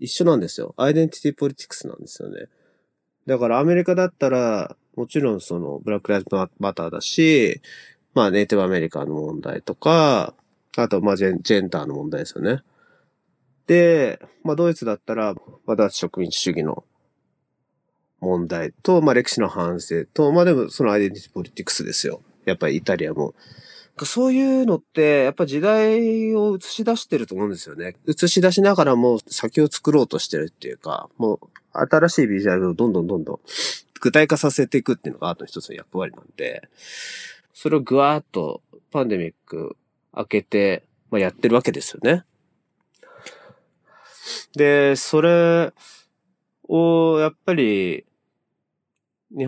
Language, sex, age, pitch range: Japanese, male, 30-49, 100-165 Hz